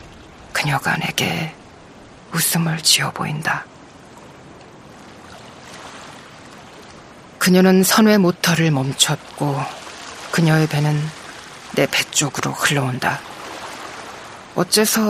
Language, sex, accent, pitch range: Korean, female, native, 155-195 Hz